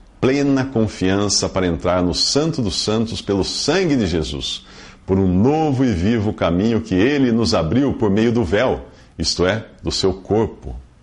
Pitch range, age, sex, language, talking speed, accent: 85-120 Hz, 50-69, male, English, 170 wpm, Brazilian